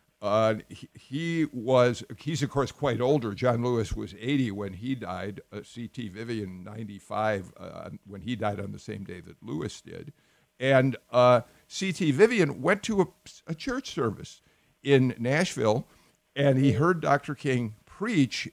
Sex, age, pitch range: male, 50-69, 110-150 Hz